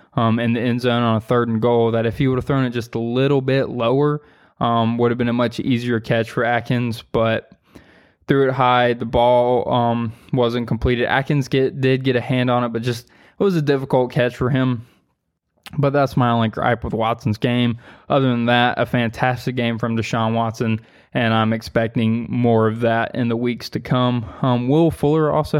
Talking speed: 210 wpm